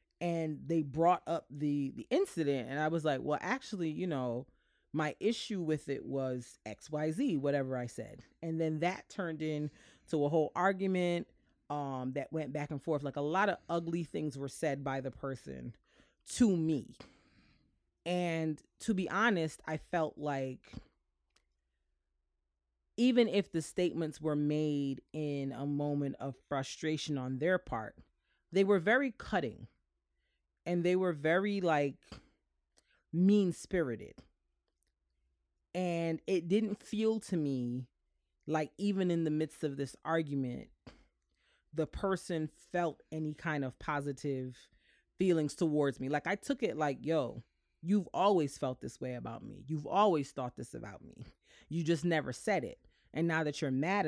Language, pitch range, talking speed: English, 135-175 Hz, 155 wpm